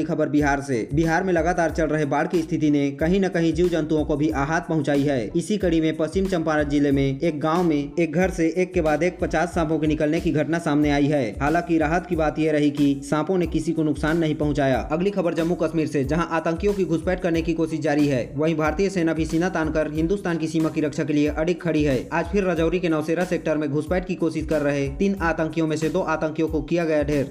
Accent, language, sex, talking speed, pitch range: native, Hindi, male, 250 wpm, 150-170 Hz